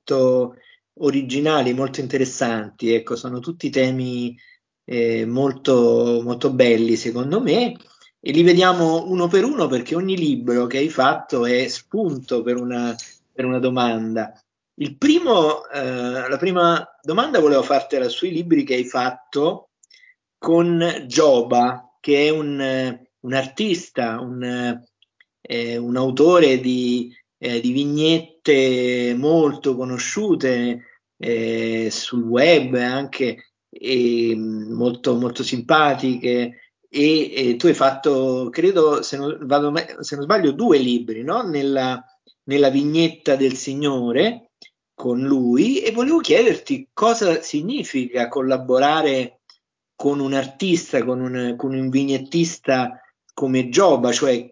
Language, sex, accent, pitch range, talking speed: Italian, male, native, 125-155 Hz, 120 wpm